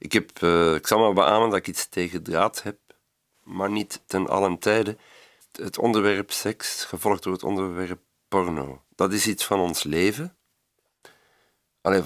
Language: Dutch